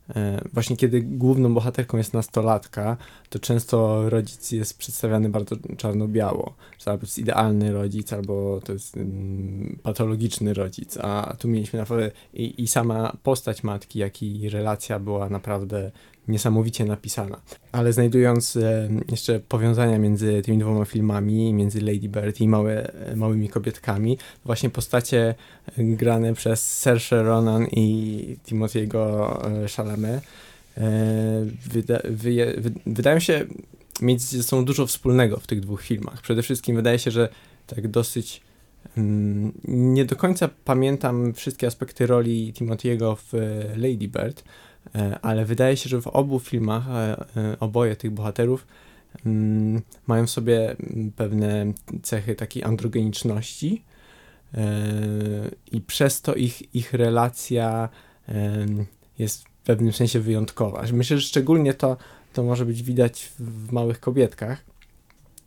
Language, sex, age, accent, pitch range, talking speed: Polish, male, 20-39, native, 105-120 Hz, 125 wpm